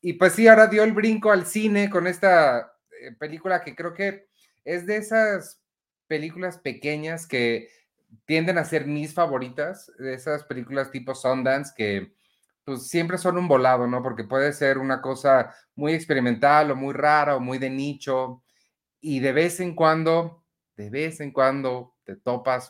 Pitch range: 115-160 Hz